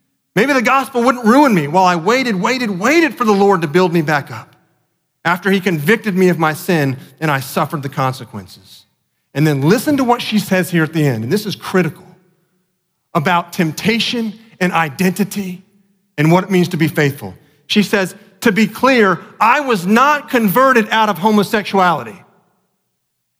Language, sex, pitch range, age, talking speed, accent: English, male, 155-220 Hz, 40-59, 175 wpm, American